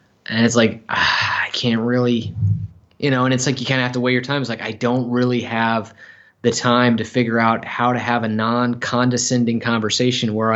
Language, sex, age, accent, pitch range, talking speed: English, male, 20-39, American, 110-135 Hz, 215 wpm